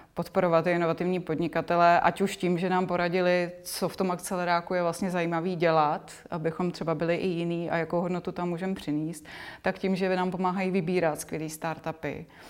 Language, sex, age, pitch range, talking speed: Czech, female, 30-49, 165-185 Hz, 180 wpm